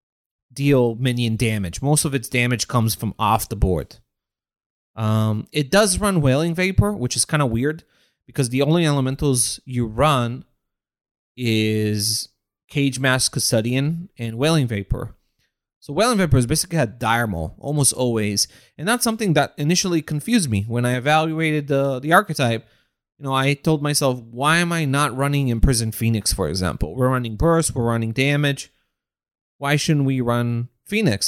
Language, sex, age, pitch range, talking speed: English, male, 30-49, 115-145 Hz, 165 wpm